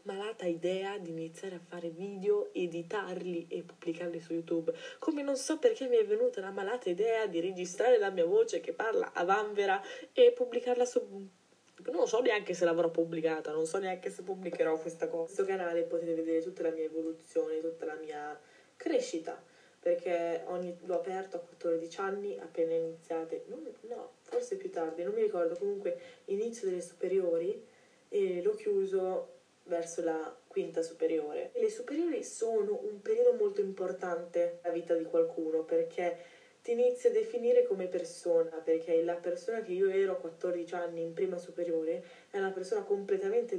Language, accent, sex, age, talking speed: Italian, native, female, 10-29, 165 wpm